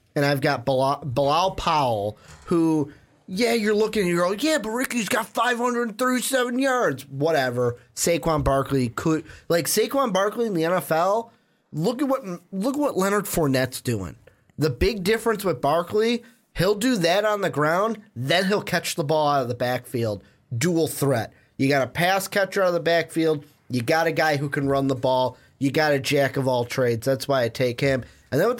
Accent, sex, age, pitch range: American, male, 30-49, 135-185 Hz